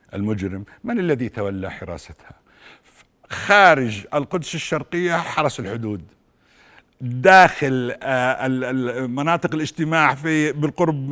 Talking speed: 85 wpm